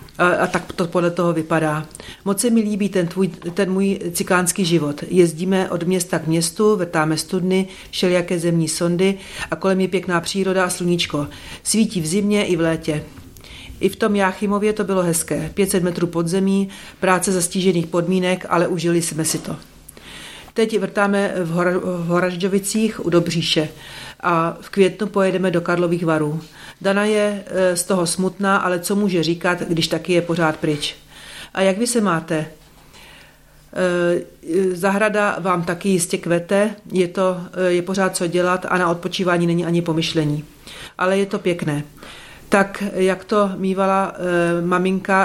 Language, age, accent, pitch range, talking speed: Czech, 40-59, native, 170-195 Hz, 155 wpm